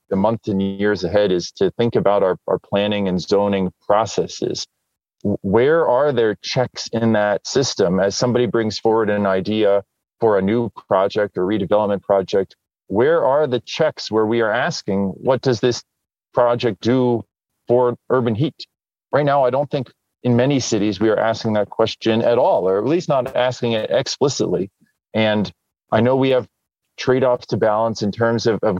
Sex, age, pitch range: male, 40-59, 100-125 Hz